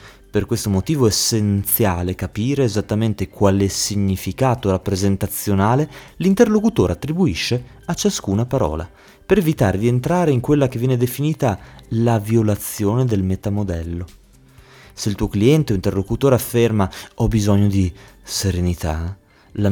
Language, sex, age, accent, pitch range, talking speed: Italian, male, 30-49, native, 95-130 Hz, 120 wpm